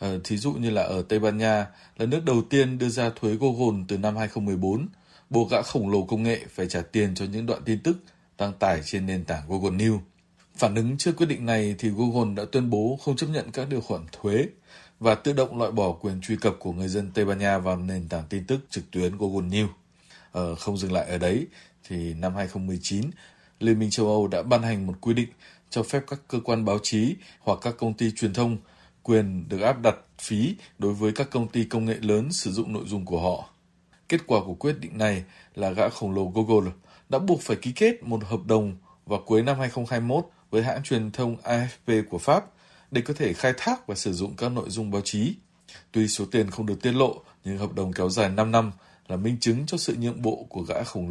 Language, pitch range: Vietnamese, 100-120 Hz